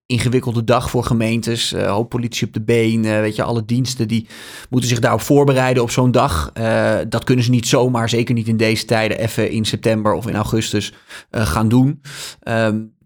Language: Dutch